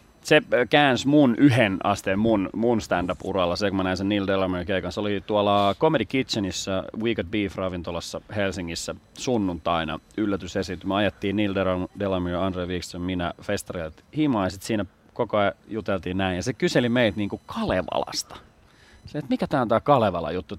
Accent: native